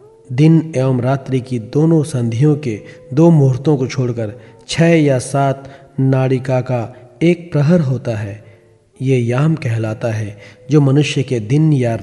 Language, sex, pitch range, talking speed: Hindi, male, 120-150 Hz, 145 wpm